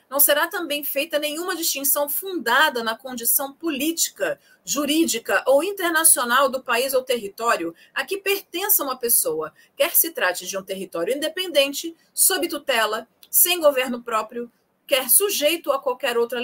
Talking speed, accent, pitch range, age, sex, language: 140 wpm, Brazilian, 195-290 Hz, 40-59, female, Portuguese